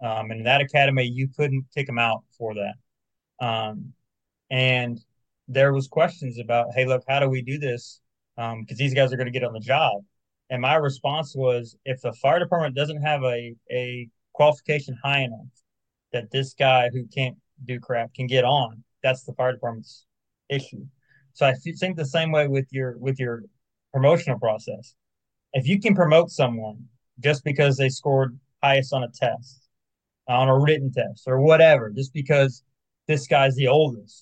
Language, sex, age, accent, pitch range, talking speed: English, male, 20-39, American, 120-145 Hz, 180 wpm